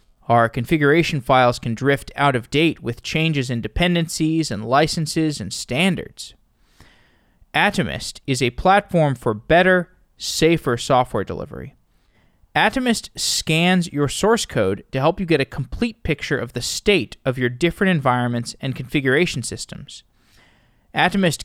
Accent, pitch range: American, 125-175 Hz